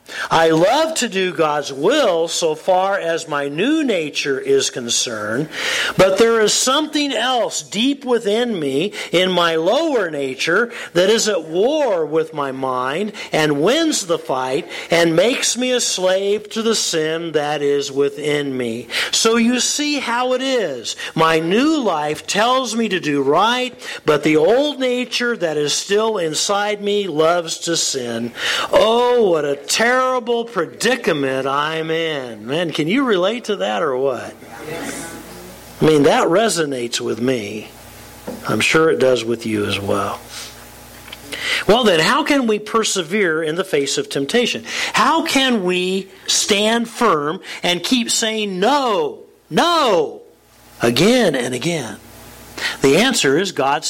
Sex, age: male, 50-69